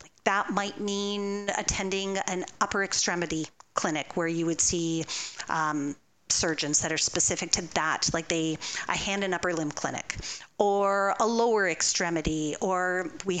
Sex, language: female, English